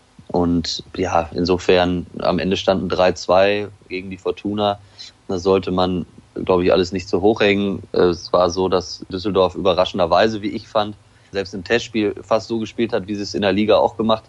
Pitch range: 90-100 Hz